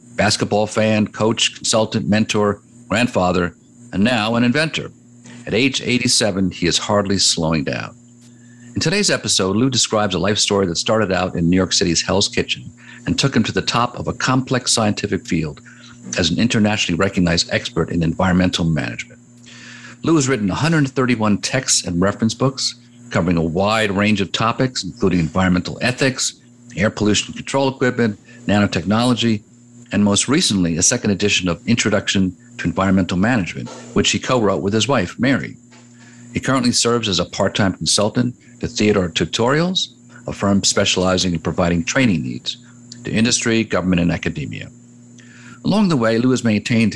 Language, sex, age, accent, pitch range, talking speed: English, male, 50-69, American, 95-120 Hz, 155 wpm